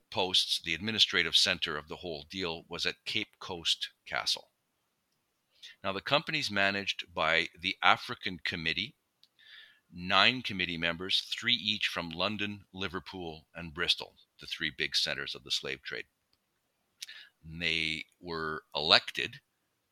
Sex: male